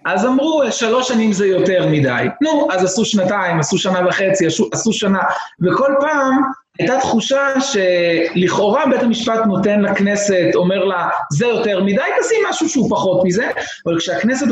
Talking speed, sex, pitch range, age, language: 155 wpm, male, 165-245 Hz, 30-49, Hebrew